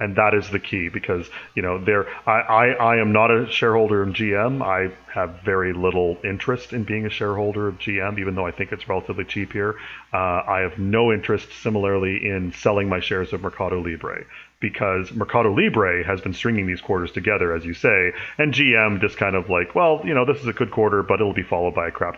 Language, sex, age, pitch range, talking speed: English, male, 30-49, 90-110 Hz, 225 wpm